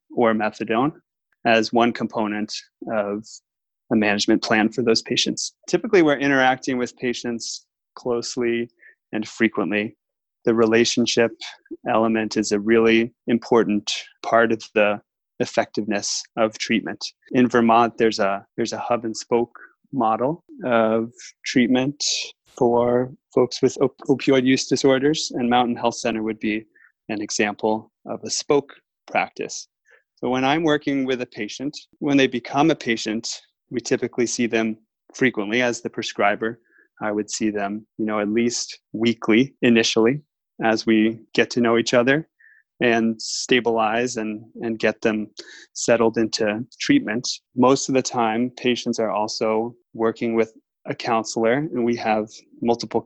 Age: 20-39